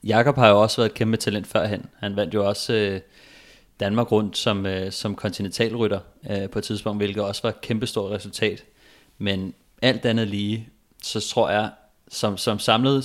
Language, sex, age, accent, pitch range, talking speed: Danish, male, 30-49, native, 100-110 Hz, 185 wpm